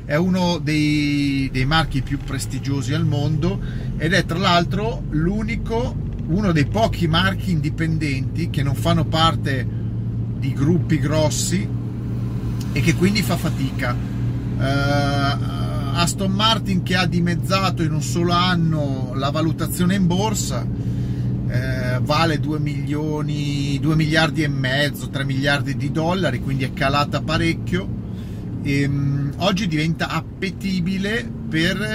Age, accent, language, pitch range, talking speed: 40-59, native, Italian, 125-160 Hz, 120 wpm